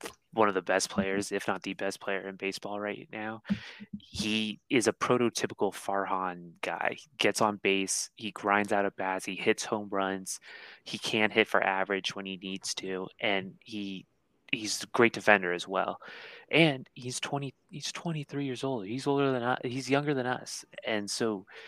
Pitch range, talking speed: 95-120 Hz, 190 wpm